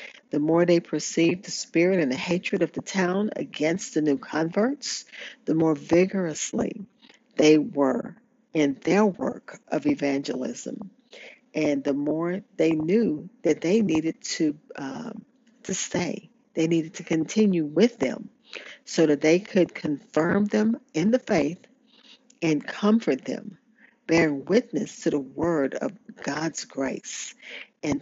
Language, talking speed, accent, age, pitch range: English, 135 wpm, American, 50-69, 155-225 Hz